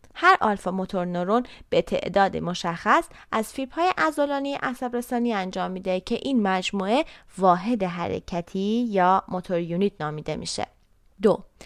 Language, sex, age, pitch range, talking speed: Persian, female, 20-39, 175-235 Hz, 135 wpm